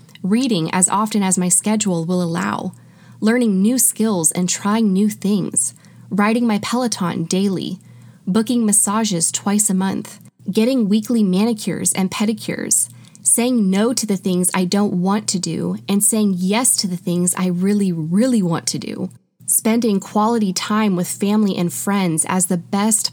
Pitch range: 180-220 Hz